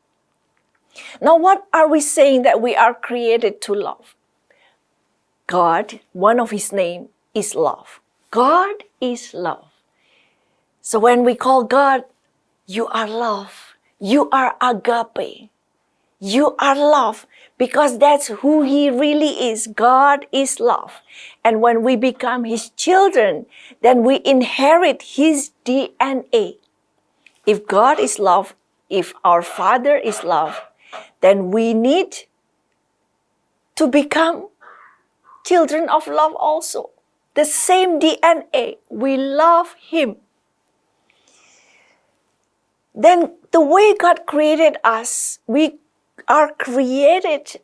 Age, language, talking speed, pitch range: 50-69, English, 110 wpm, 230-310 Hz